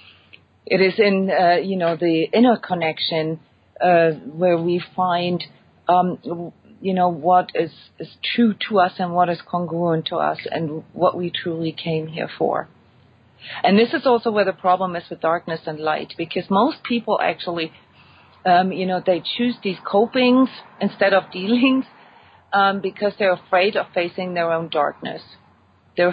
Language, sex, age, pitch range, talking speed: English, female, 40-59, 165-195 Hz, 165 wpm